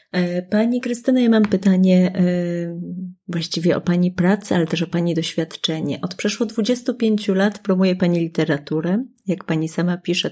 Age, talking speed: 30-49, 145 wpm